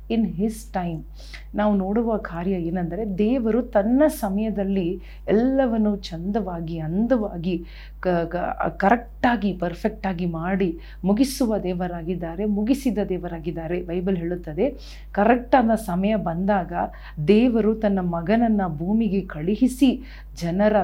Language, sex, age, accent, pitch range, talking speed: Kannada, female, 40-59, native, 180-215 Hz, 90 wpm